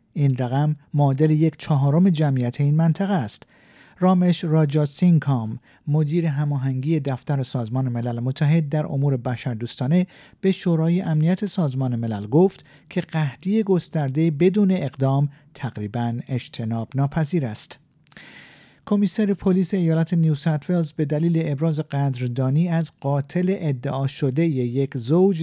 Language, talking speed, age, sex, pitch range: Persian, 115 wpm, 50-69, male, 130-170 Hz